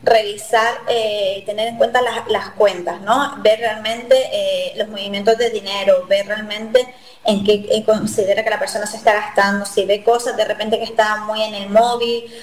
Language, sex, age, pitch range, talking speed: Spanish, female, 20-39, 210-240 Hz, 190 wpm